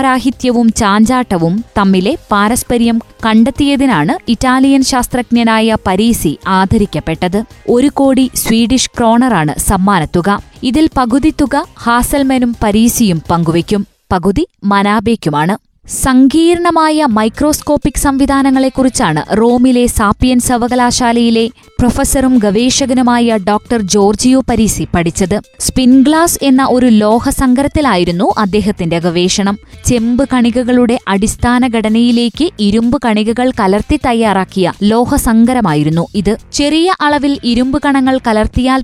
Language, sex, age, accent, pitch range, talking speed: Malayalam, female, 20-39, native, 210-260 Hz, 85 wpm